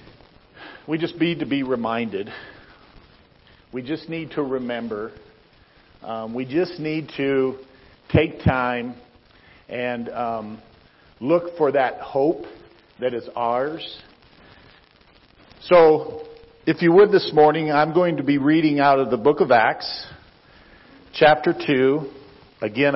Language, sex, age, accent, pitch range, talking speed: English, male, 50-69, American, 125-155 Hz, 125 wpm